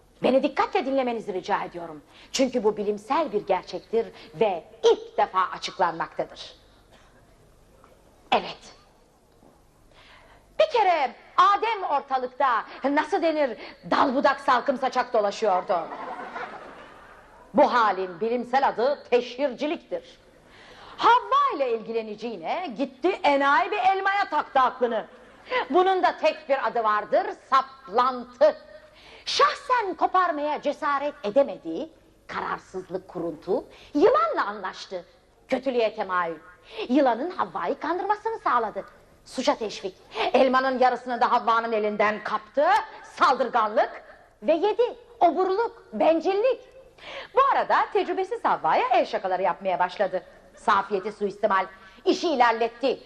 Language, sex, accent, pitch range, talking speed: Turkish, female, native, 215-340 Hz, 95 wpm